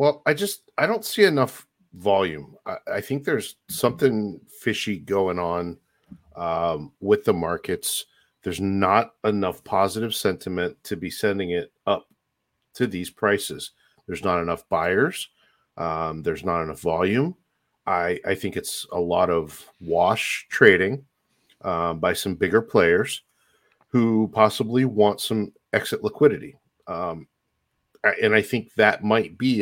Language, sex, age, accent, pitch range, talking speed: English, male, 40-59, American, 90-125 Hz, 140 wpm